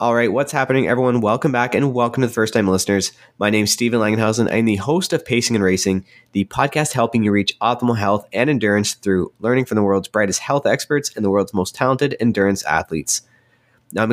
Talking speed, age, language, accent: 220 wpm, 20-39, English, American